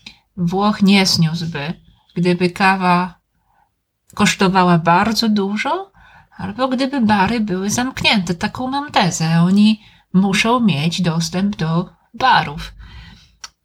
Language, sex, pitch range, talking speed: Italian, female, 180-215 Hz, 95 wpm